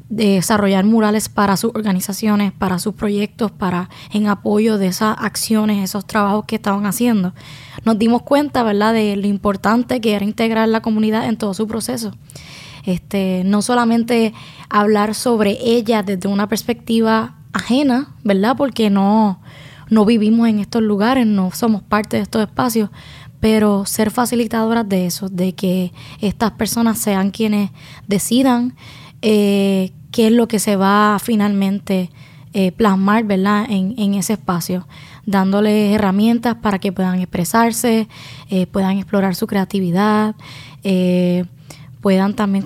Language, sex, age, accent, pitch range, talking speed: English, female, 10-29, American, 185-220 Hz, 140 wpm